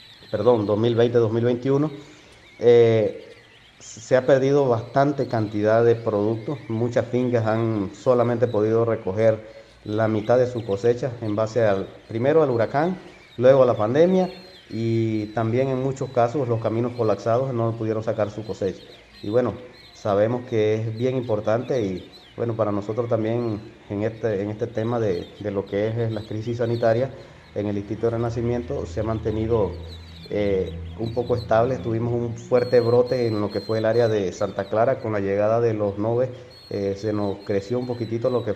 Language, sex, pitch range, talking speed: Spanish, male, 105-120 Hz, 165 wpm